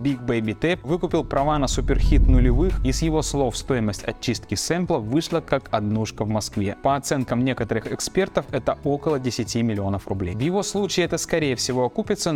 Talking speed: 175 wpm